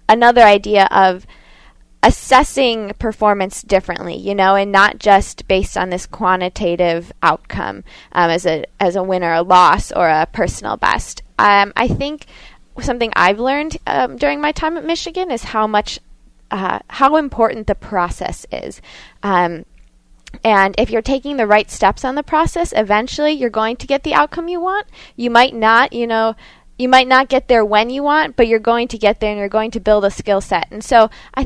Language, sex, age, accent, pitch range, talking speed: English, female, 10-29, American, 200-260 Hz, 190 wpm